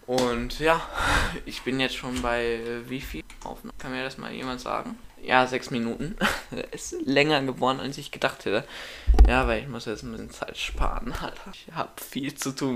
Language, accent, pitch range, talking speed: German, German, 110-140 Hz, 200 wpm